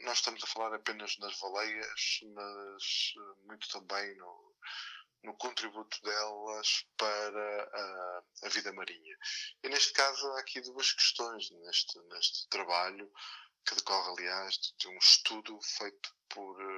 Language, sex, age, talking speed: Portuguese, male, 20-39, 135 wpm